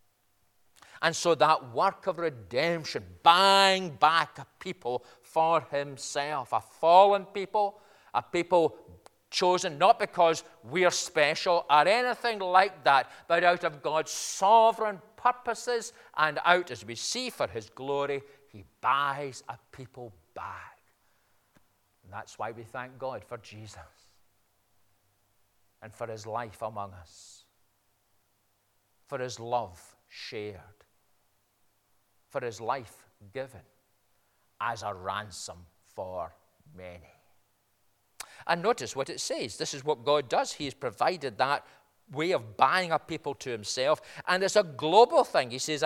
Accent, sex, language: British, male, English